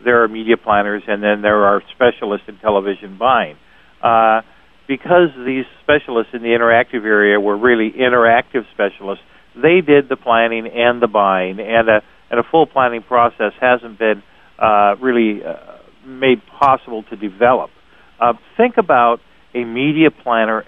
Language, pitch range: English, 110-130 Hz